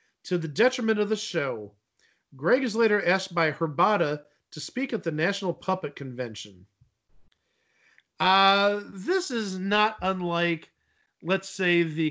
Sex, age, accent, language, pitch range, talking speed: male, 40-59, American, English, 150-205 Hz, 135 wpm